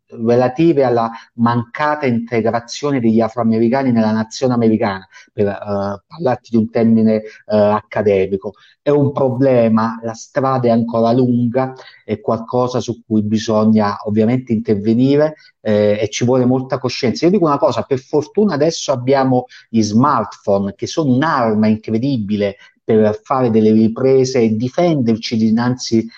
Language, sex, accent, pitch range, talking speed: Italian, male, native, 110-135 Hz, 130 wpm